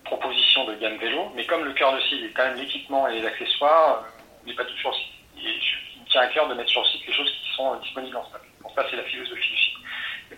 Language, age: French, 30-49